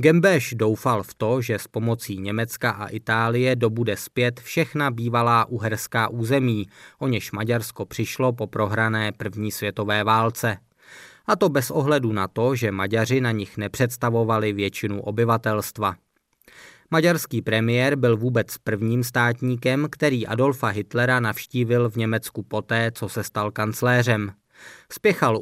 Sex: male